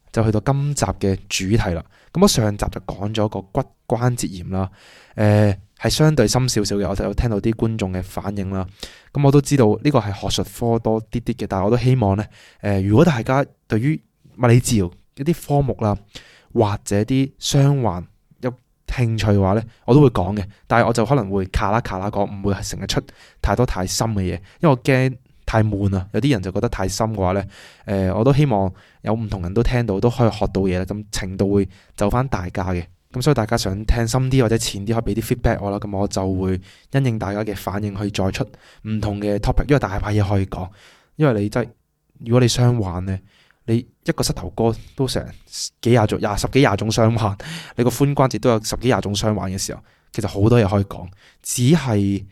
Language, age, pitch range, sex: Chinese, 20-39, 100-125 Hz, male